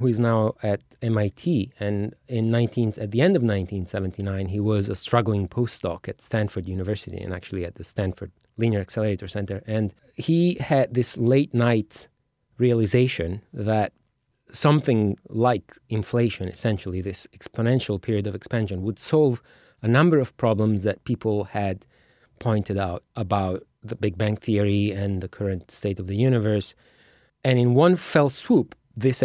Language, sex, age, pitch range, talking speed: English, male, 30-49, 100-125 Hz, 155 wpm